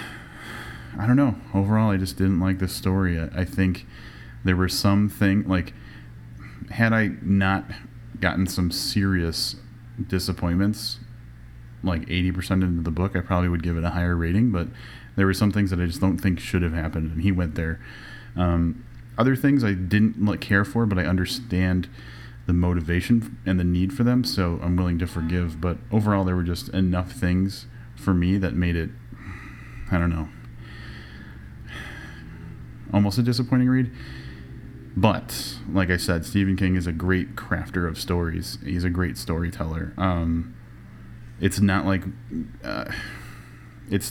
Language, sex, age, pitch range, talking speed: English, male, 30-49, 85-105 Hz, 155 wpm